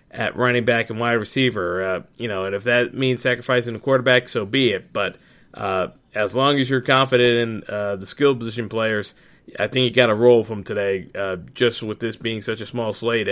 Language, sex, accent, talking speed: English, male, American, 220 wpm